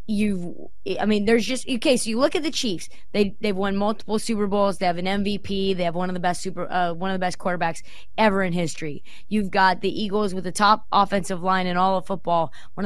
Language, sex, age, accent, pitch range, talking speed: English, female, 20-39, American, 190-230 Hz, 245 wpm